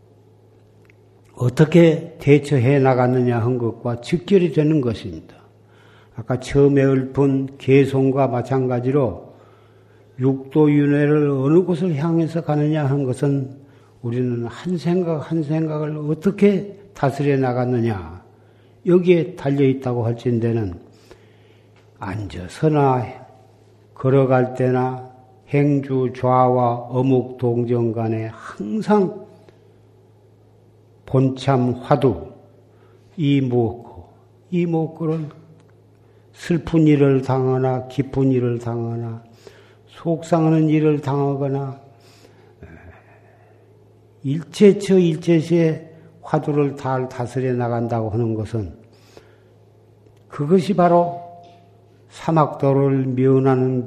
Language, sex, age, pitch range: Korean, male, 60-79, 115-145 Hz